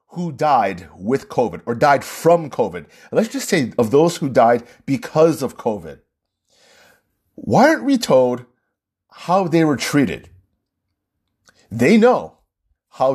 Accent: American